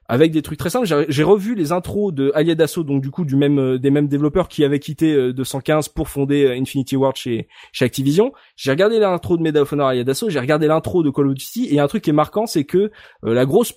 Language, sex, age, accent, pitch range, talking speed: French, male, 20-39, French, 135-180 Hz, 240 wpm